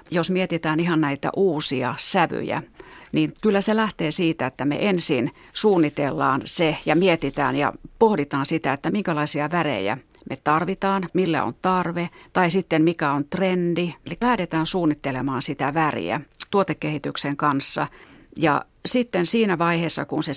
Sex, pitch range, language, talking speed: female, 145-180 Hz, Finnish, 140 wpm